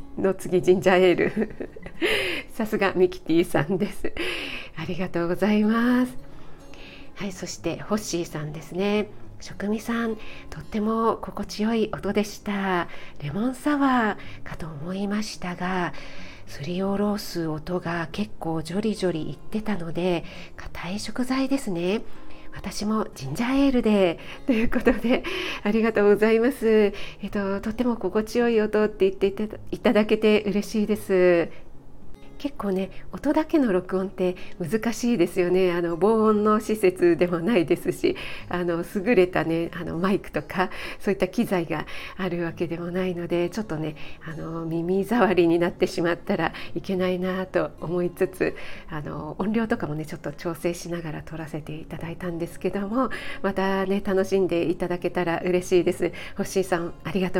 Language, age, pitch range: Japanese, 40-59, 175-215 Hz